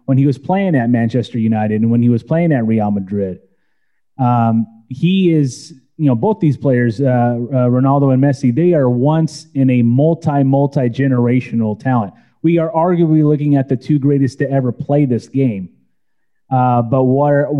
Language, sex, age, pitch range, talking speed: English, male, 30-49, 125-145 Hz, 175 wpm